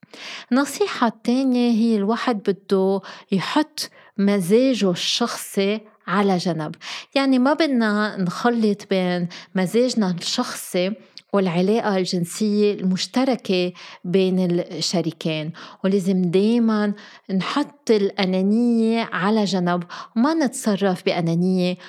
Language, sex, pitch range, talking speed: Arabic, female, 180-225 Hz, 85 wpm